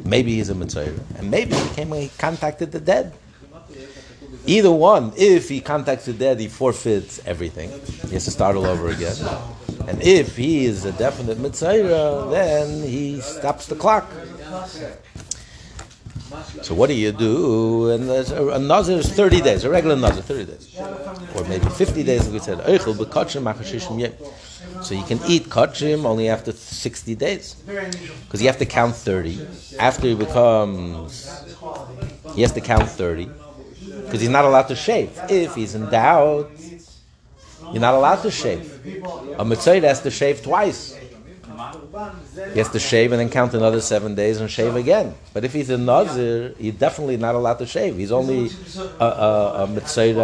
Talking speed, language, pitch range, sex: 165 wpm, English, 110-150 Hz, male